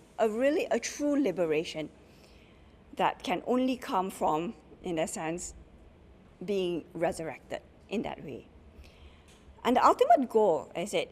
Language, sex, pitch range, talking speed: English, female, 180-255 Hz, 130 wpm